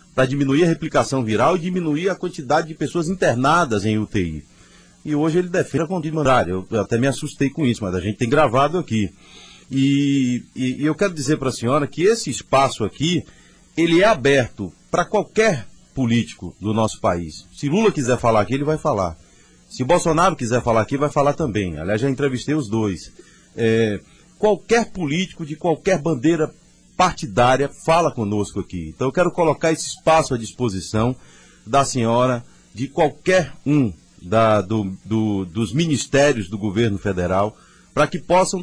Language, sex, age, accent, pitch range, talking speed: Portuguese, male, 40-59, Brazilian, 110-160 Hz, 165 wpm